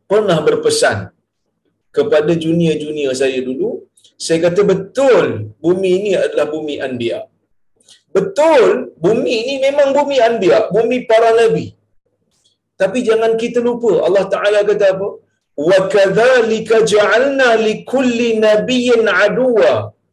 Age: 50-69